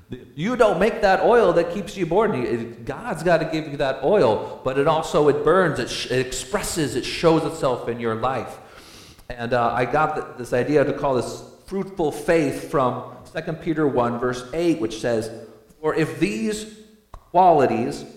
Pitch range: 115-170 Hz